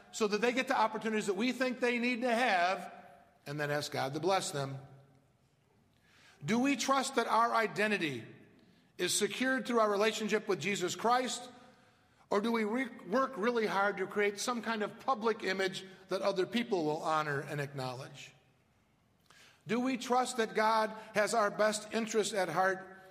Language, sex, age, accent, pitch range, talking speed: English, male, 50-69, American, 170-215 Hz, 170 wpm